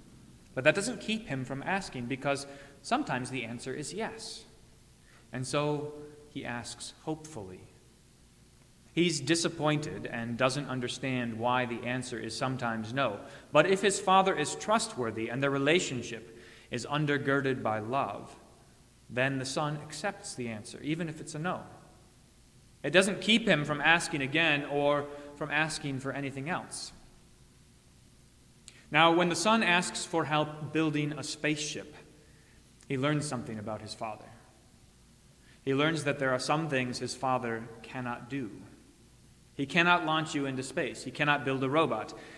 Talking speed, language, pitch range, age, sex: 145 wpm, English, 120-155 Hz, 30-49, male